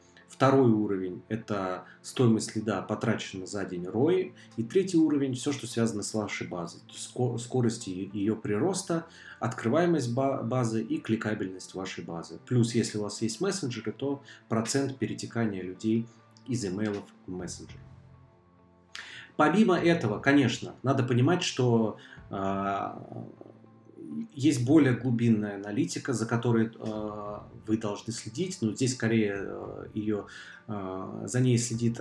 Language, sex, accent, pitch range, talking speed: Russian, male, native, 105-135 Hz, 125 wpm